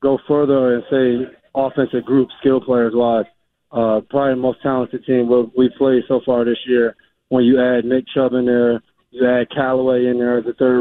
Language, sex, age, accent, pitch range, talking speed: English, male, 20-39, American, 120-130 Hz, 200 wpm